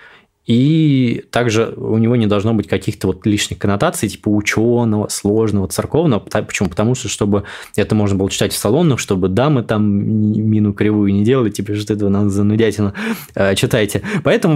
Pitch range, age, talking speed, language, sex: 100-125 Hz, 20-39, 160 wpm, Russian, male